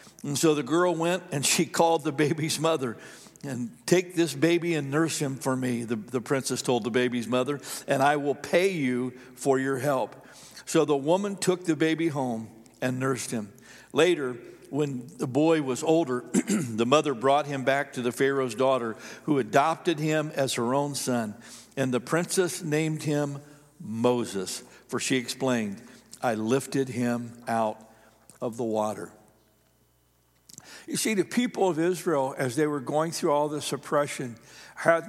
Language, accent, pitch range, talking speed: English, American, 125-155 Hz, 170 wpm